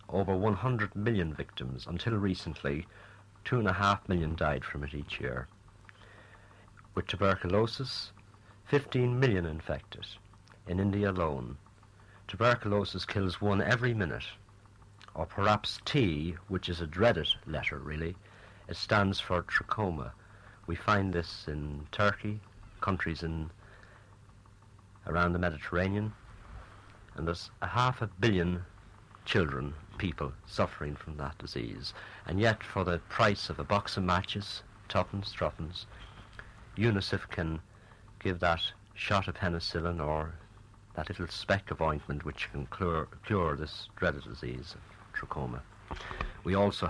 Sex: male